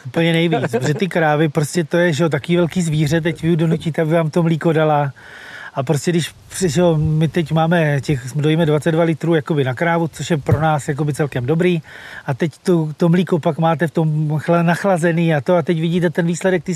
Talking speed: 215 wpm